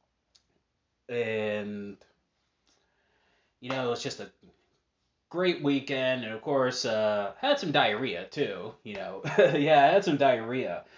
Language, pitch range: English, 105-130 Hz